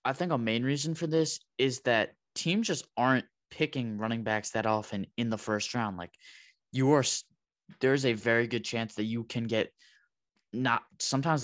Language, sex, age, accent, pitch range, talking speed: English, male, 20-39, American, 105-125 Hz, 185 wpm